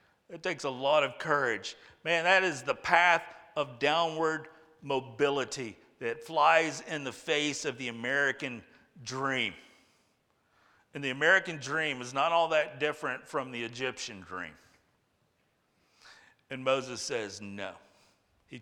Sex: male